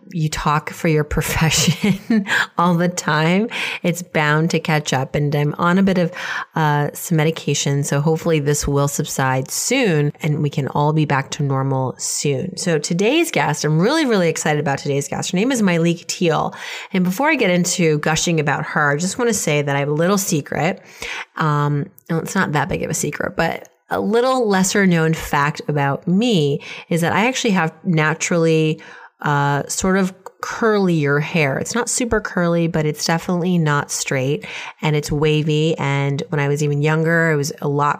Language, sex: English, female